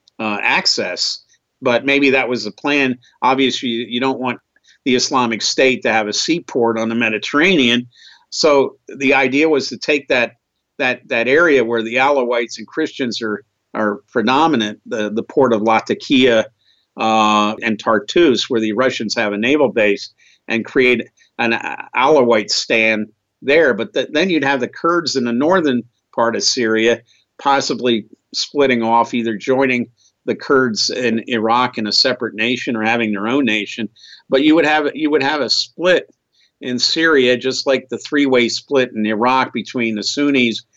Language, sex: English, male